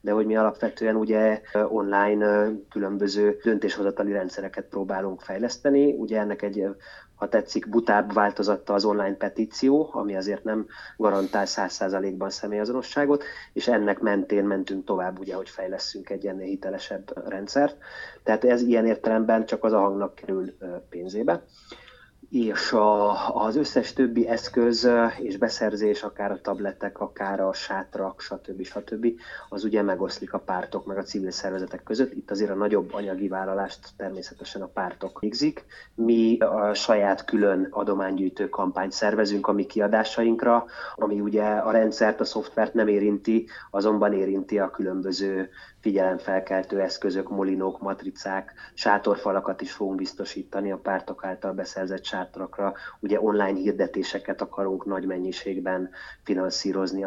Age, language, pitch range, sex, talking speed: 30-49, Hungarian, 95-110 Hz, male, 135 wpm